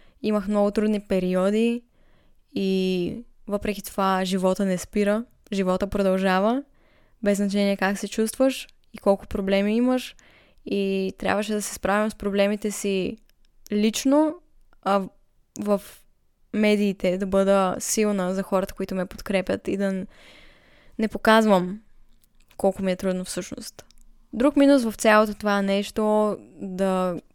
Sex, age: female, 10-29